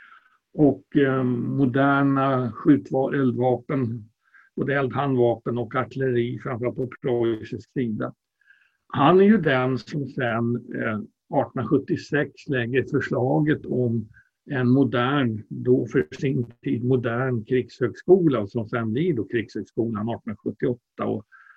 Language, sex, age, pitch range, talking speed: Swedish, male, 60-79, 125-150 Hz, 105 wpm